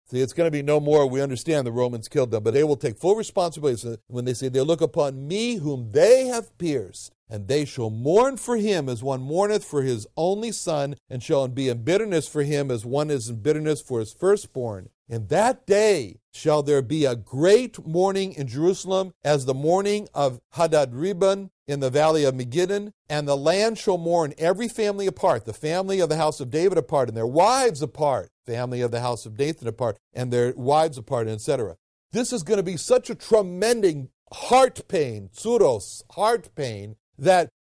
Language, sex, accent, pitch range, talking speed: English, male, American, 130-200 Hz, 205 wpm